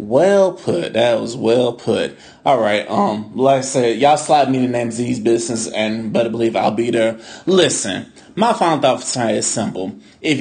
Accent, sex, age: American, male, 30-49